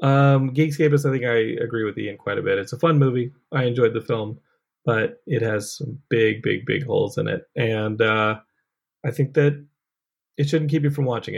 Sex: male